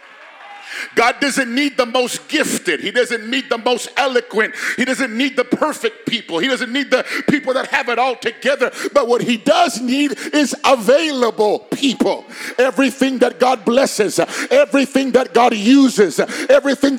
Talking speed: 160 wpm